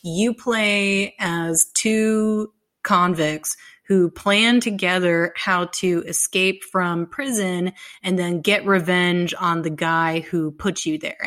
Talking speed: 130 wpm